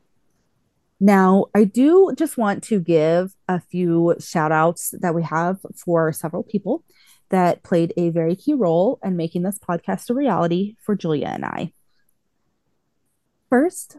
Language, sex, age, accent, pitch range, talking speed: English, female, 30-49, American, 170-215 Hz, 145 wpm